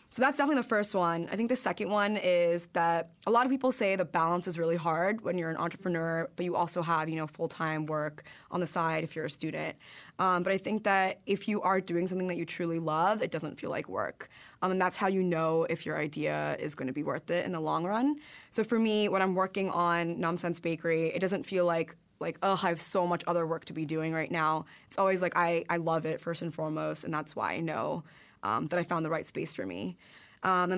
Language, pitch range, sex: English, 165-190 Hz, female